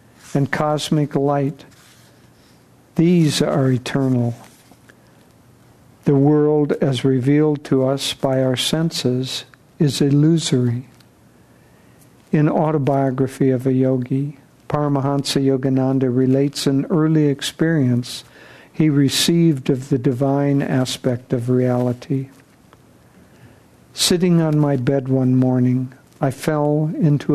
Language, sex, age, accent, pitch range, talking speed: English, male, 60-79, American, 130-150 Hz, 100 wpm